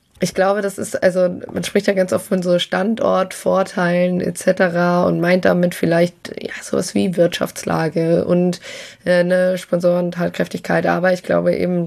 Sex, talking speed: female, 145 wpm